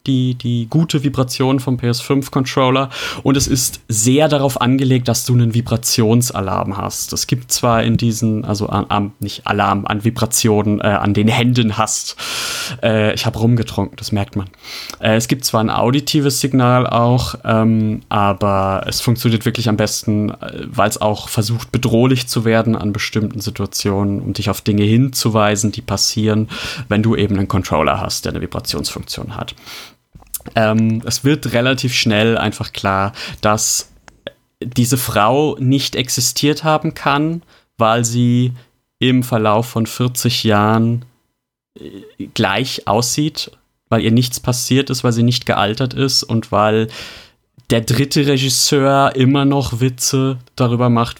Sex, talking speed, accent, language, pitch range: male, 145 wpm, German, German, 110-130 Hz